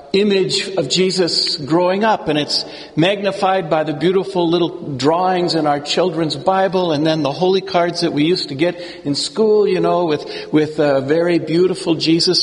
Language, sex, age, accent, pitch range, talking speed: English, male, 60-79, American, 155-205 Hz, 180 wpm